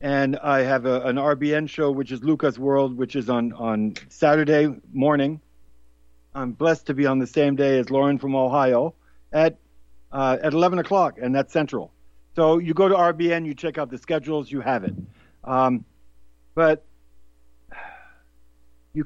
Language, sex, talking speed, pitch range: English, male, 165 wpm, 125-170 Hz